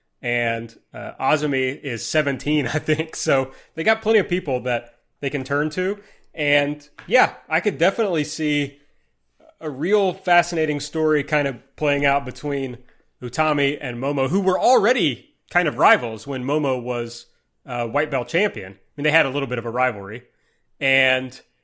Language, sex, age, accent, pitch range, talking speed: English, male, 30-49, American, 125-155 Hz, 165 wpm